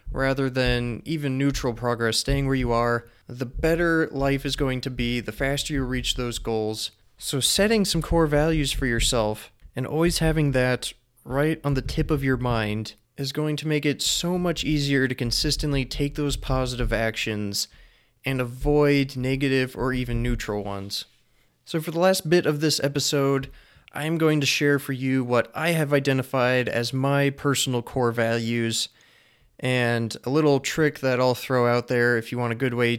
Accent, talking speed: American, 180 wpm